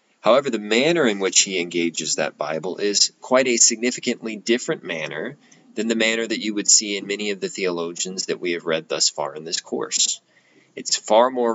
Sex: male